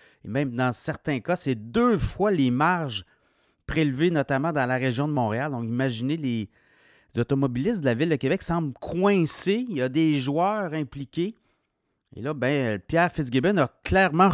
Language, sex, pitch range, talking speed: French, male, 125-160 Hz, 170 wpm